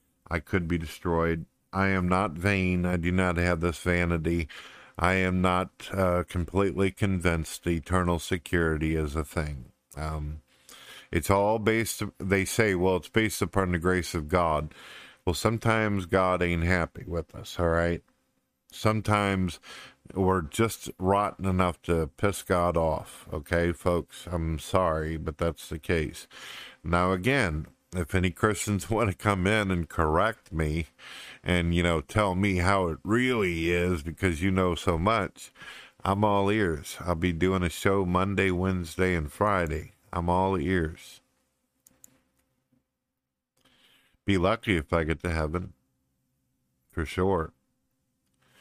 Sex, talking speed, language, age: male, 140 wpm, English, 50-69